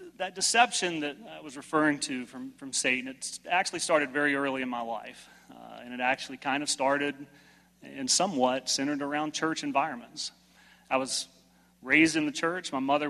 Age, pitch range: 30-49, 125-150 Hz